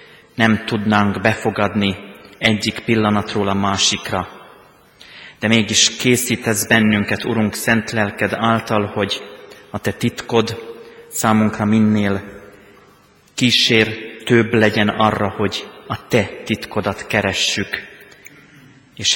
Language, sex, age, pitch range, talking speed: Hungarian, male, 30-49, 100-115 Hz, 95 wpm